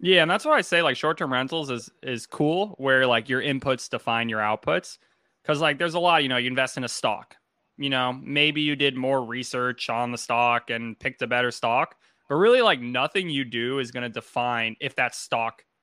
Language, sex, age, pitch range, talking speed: English, male, 20-39, 120-150 Hz, 225 wpm